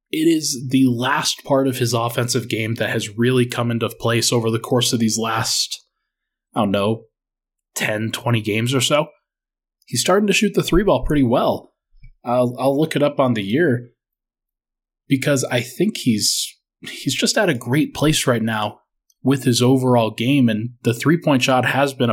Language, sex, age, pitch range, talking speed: English, male, 20-39, 120-165 Hz, 185 wpm